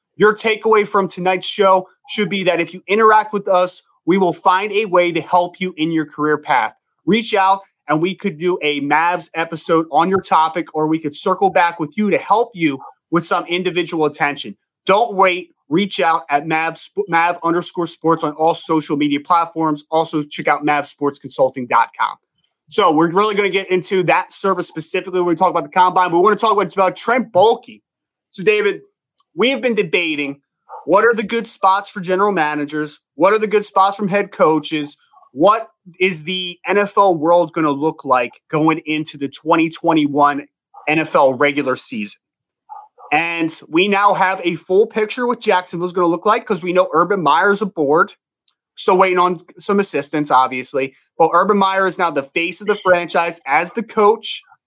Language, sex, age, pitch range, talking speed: English, male, 30-49, 160-205 Hz, 185 wpm